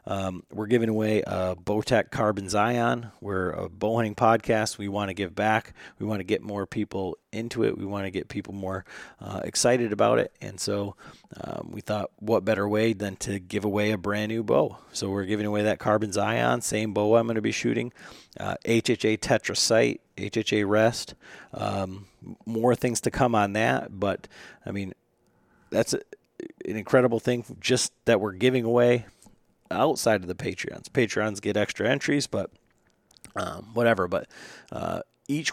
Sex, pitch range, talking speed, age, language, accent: male, 100-115 Hz, 180 wpm, 40-59, English, American